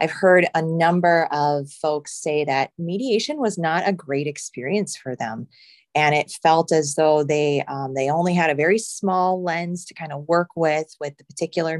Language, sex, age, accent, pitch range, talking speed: English, female, 30-49, American, 150-185 Hz, 195 wpm